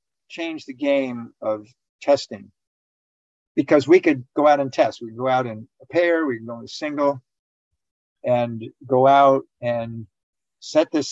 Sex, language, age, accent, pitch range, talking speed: male, English, 50-69, American, 115-140 Hz, 155 wpm